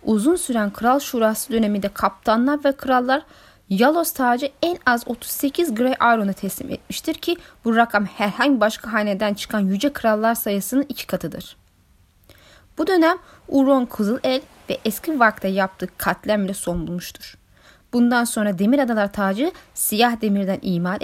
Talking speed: 140 wpm